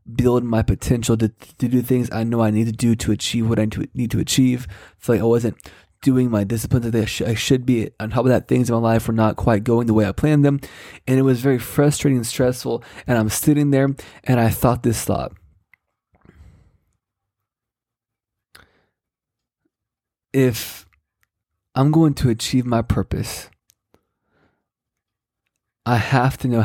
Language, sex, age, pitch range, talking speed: English, male, 20-39, 110-130 Hz, 175 wpm